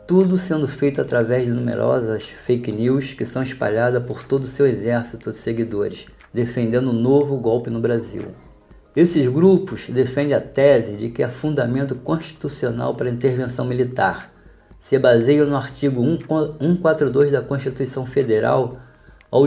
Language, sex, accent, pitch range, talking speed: Portuguese, male, Brazilian, 120-145 Hz, 145 wpm